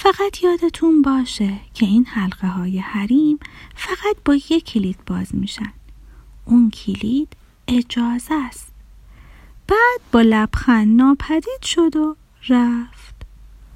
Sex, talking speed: female, 110 wpm